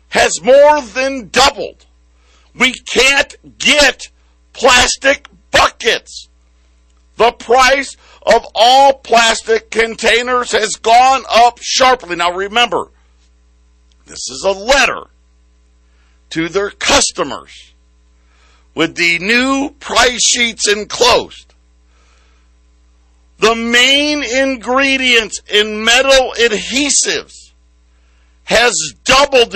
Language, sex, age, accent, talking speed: English, male, 60-79, American, 85 wpm